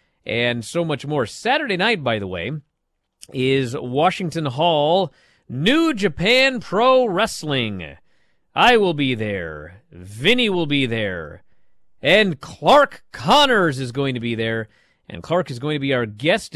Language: English